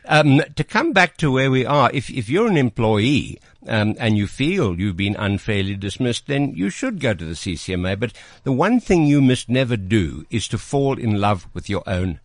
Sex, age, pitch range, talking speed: male, 60-79, 105-140 Hz, 215 wpm